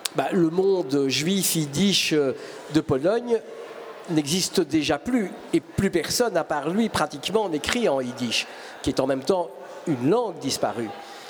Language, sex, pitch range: French, male, 175-245 Hz